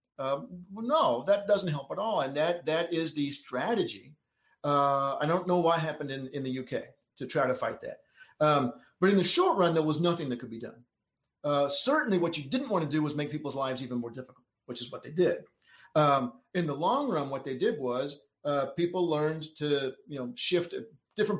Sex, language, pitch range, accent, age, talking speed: male, English, 135-175 Hz, American, 50-69, 225 wpm